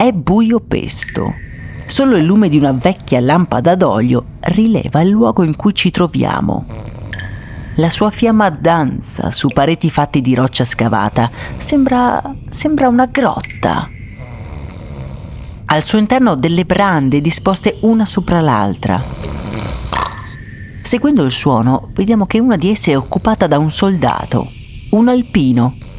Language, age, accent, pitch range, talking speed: Italian, 40-59, native, 120-190 Hz, 130 wpm